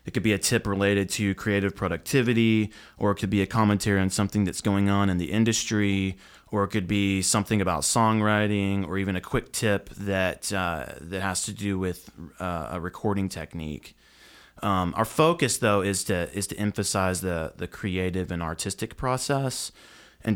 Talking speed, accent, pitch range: 185 wpm, American, 85-105 Hz